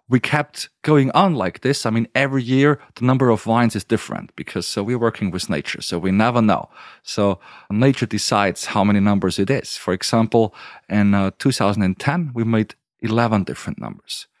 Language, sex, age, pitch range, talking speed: English, male, 40-59, 110-145 Hz, 185 wpm